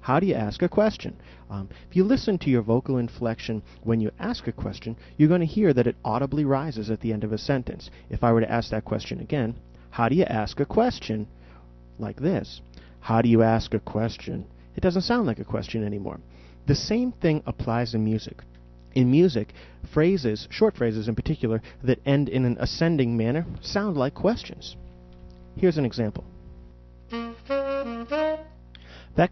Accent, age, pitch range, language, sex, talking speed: American, 30-49, 100-135 Hz, English, male, 180 wpm